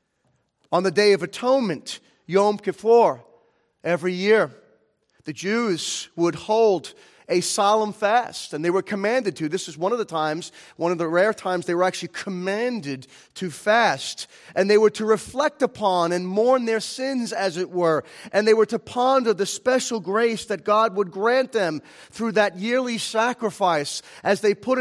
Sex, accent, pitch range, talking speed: male, American, 175-220 Hz, 170 wpm